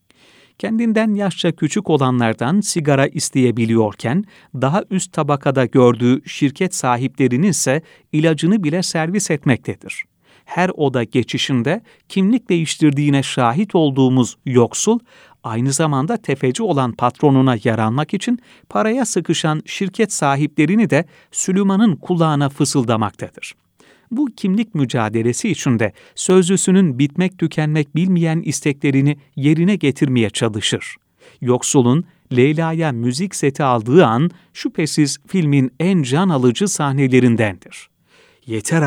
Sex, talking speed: male, 100 wpm